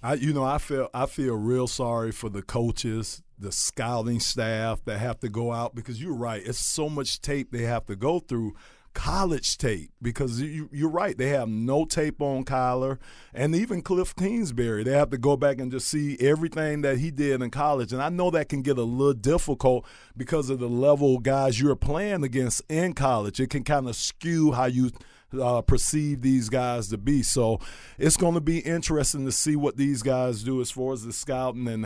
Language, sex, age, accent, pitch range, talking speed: English, male, 50-69, American, 125-145 Hz, 215 wpm